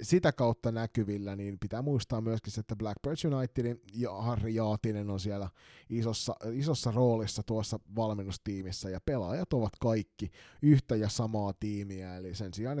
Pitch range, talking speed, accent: 105-130 Hz, 145 wpm, native